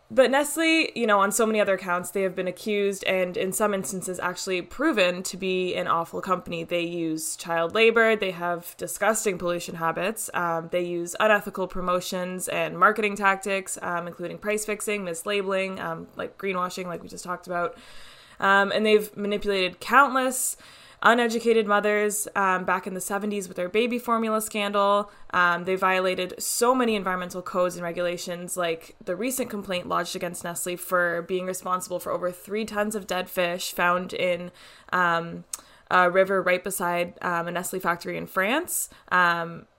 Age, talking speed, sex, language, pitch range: 20-39, 170 wpm, female, English, 175-205 Hz